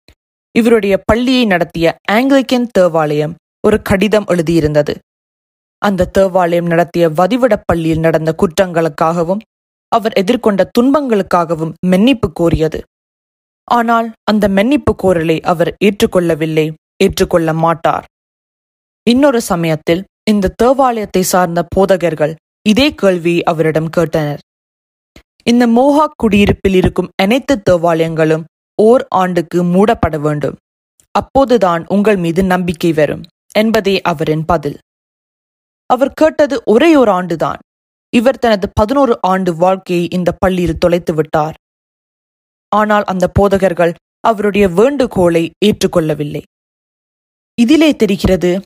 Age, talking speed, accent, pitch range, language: 20-39, 95 wpm, native, 165-215 Hz, Tamil